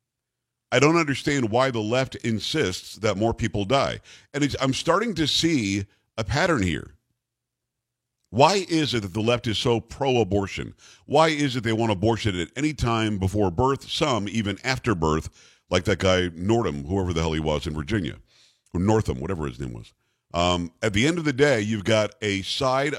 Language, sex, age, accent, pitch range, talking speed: English, male, 50-69, American, 105-135 Hz, 185 wpm